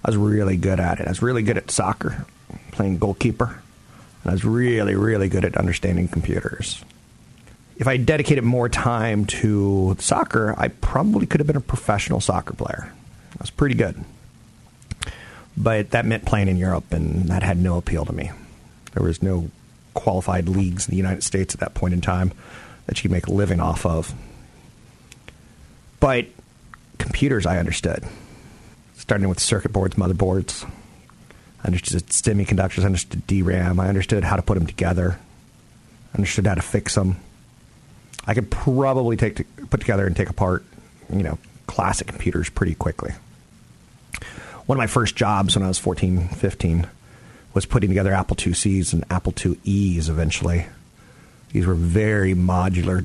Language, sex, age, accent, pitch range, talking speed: English, male, 40-59, American, 90-110 Hz, 165 wpm